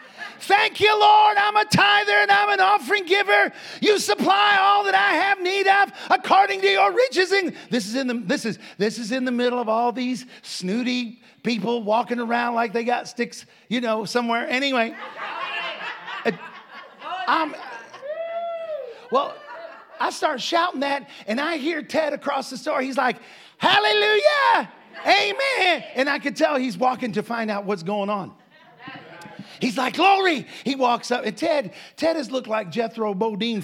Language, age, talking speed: English, 40-59, 155 wpm